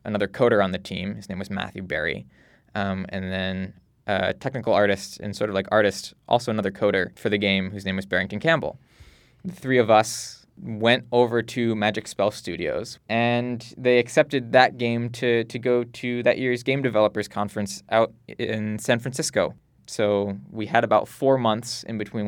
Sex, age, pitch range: male, 20-39, 100-120 Hz